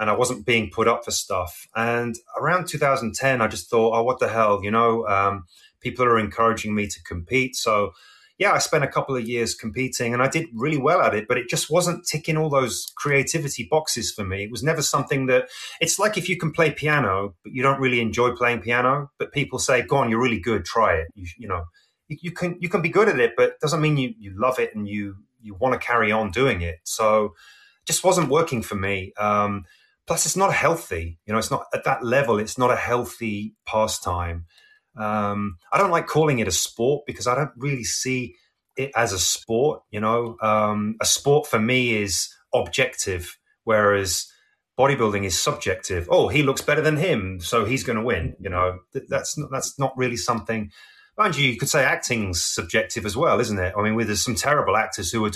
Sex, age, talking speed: male, 30-49, 220 wpm